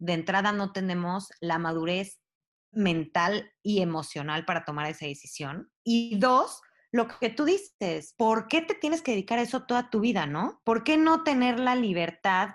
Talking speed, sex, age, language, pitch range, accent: 175 wpm, female, 20-39, Spanish, 165-225 Hz, Mexican